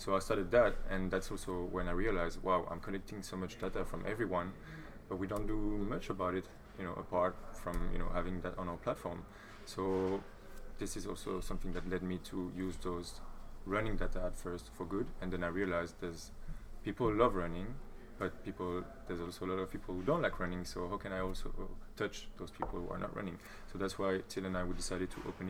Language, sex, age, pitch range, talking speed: English, male, 20-39, 90-100 Hz, 225 wpm